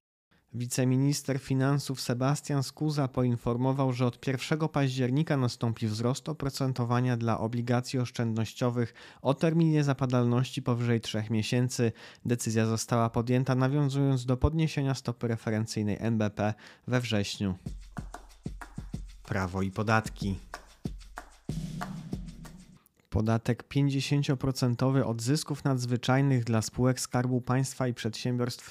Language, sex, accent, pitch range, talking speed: Polish, male, native, 115-135 Hz, 95 wpm